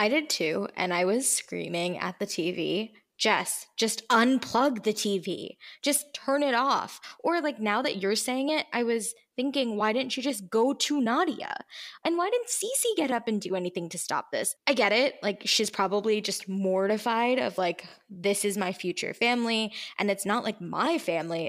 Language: English